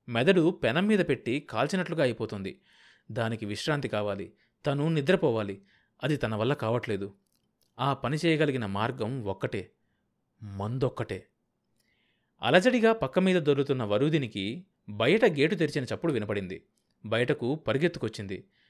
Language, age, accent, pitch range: Telugu, 30-49, native, 110-155 Hz